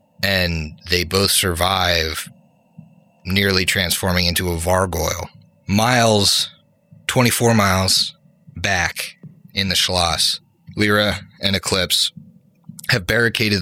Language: English